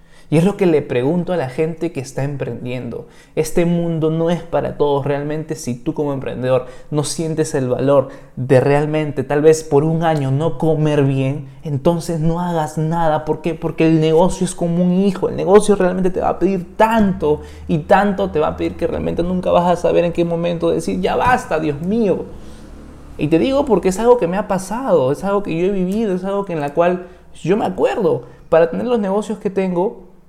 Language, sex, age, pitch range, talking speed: Spanish, male, 20-39, 145-180 Hz, 215 wpm